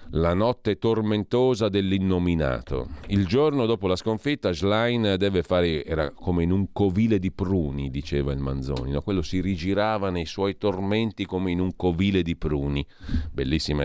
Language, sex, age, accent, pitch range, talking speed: Italian, male, 40-59, native, 75-105 Hz, 155 wpm